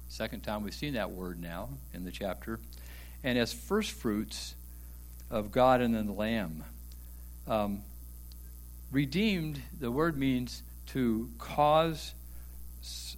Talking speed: 125 wpm